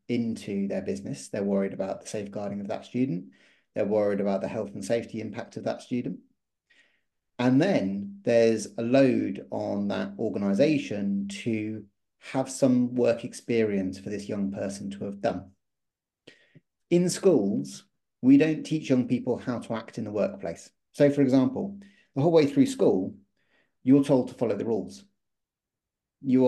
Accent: British